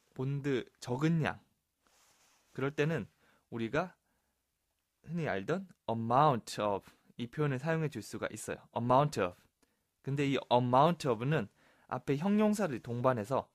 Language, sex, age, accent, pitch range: Korean, male, 20-39, native, 110-160 Hz